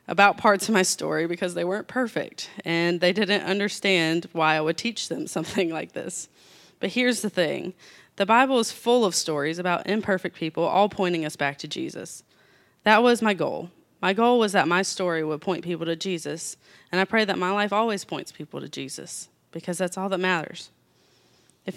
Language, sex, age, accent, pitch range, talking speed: English, female, 20-39, American, 165-200 Hz, 200 wpm